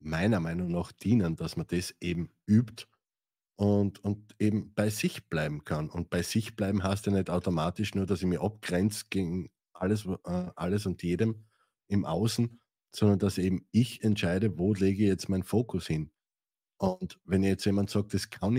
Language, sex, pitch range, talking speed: German, male, 90-105 Hz, 180 wpm